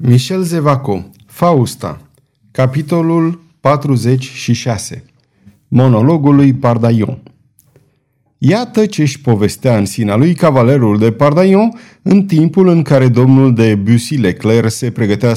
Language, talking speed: Romanian, 105 wpm